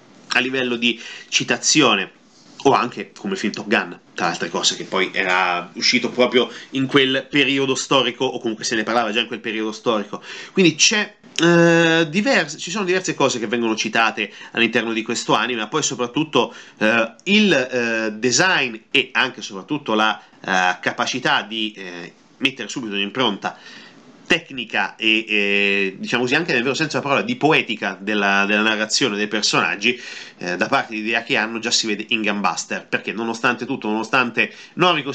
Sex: male